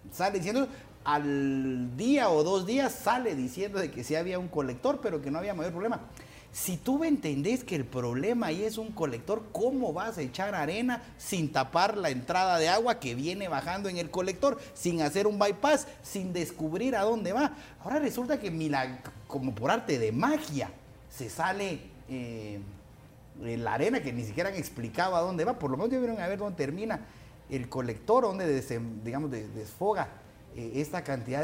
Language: Spanish